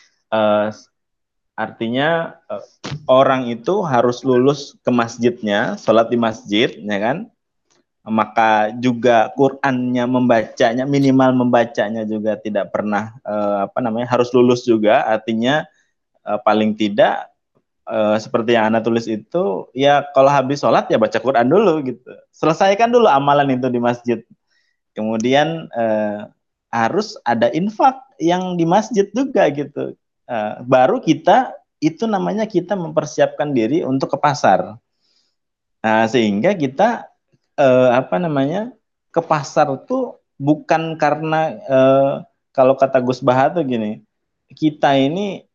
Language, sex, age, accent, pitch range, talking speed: Indonesian, male, 20-39, native, 120-155 Hz, 125 wpm